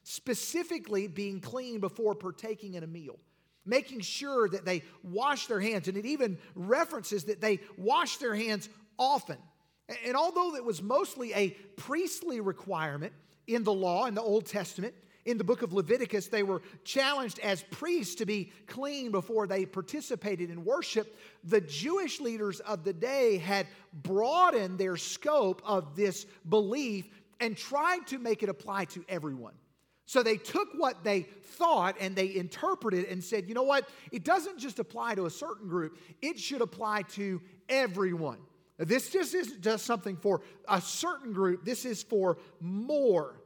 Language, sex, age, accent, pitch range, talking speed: English, male, 50-69, American, 190-245 Hz, 165 wpm